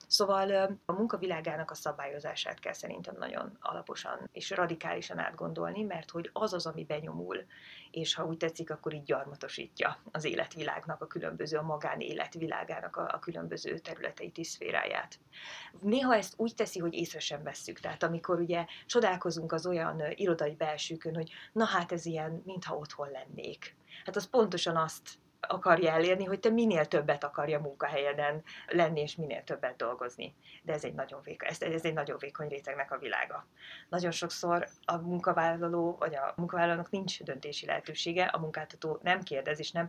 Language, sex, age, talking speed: Hungarian, female, 30-49, 160 wpm